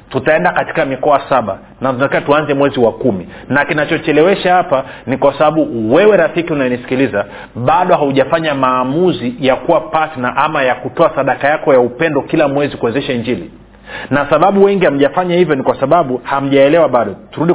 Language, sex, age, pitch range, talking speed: Swahili, male, 40-59, 125-160 Hz, 160 wpm